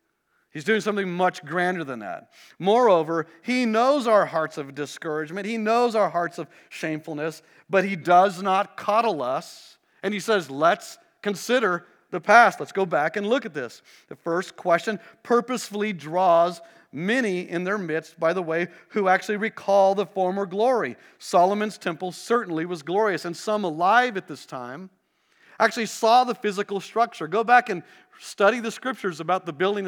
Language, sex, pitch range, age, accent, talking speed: English, male, 165-220 Hz, 40-59, American, 165 wpm